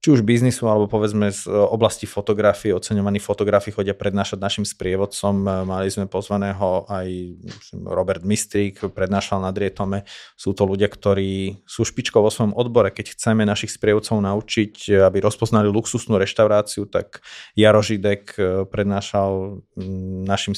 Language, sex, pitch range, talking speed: Slovak, male, 100-105 Hz, 130 wpm